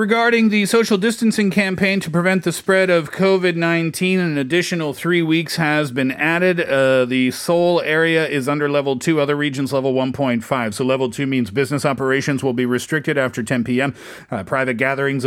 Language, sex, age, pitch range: Korean, male, 40-59, 130-160 Hz